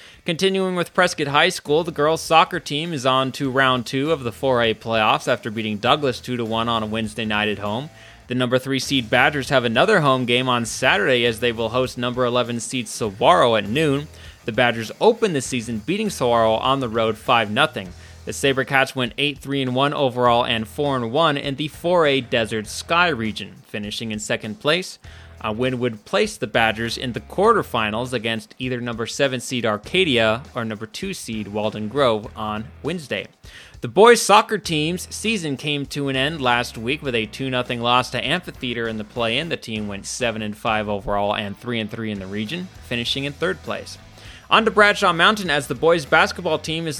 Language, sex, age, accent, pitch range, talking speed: English, male, 20-39, American, 115-145 Hz, 200 wpm